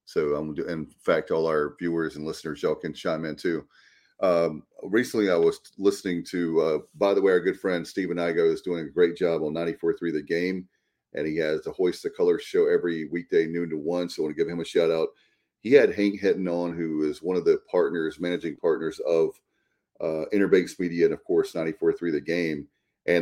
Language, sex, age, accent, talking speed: English, male, 40-59, American, 215 wpm